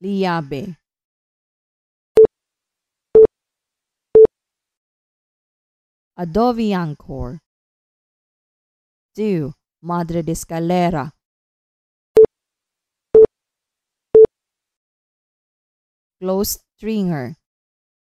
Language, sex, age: English, female, 20-39